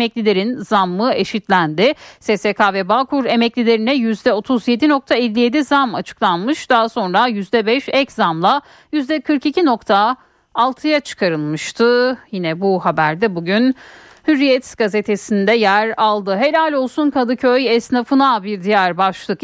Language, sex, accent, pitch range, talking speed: Turkish, female, native, 205-270 Hz, 110 wpm